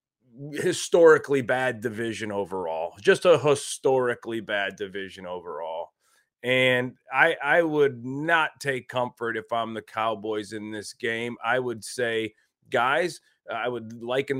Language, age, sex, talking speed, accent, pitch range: English, 30-49, male, 130 wpm, American, 110-145 Hz